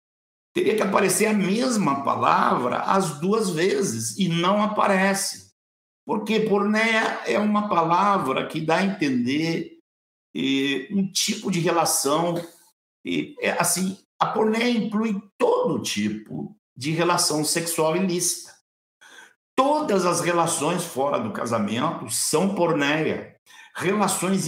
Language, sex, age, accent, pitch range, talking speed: Portuguese, male, 60-79, Brazilian, 150-205 Hz, 105 wpm